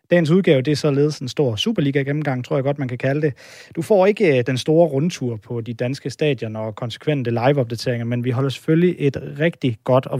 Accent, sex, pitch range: native, male, 120-150 Hz